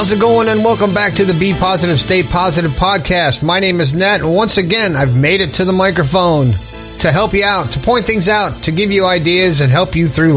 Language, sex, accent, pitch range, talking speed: English, male, American, 155-210 Hz, 245 wpm